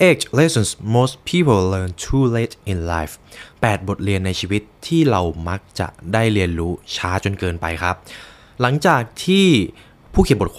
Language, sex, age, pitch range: Thai, male, 20-39, 90-125 Hz